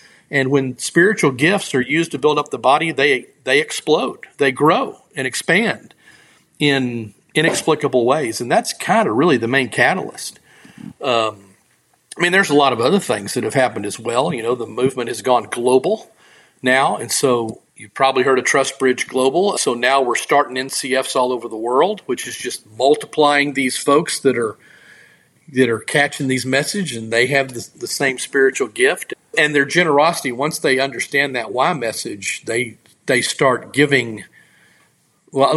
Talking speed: 175 wpm